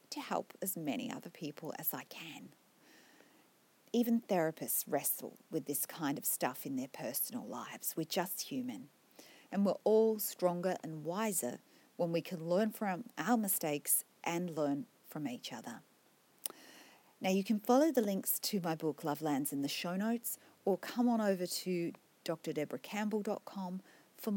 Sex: female